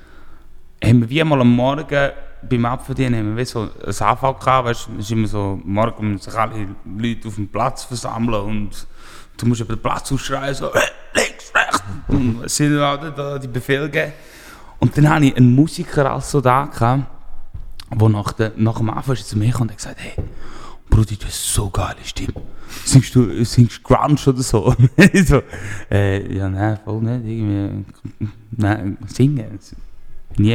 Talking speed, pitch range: 165 wpm, 110-140 Hz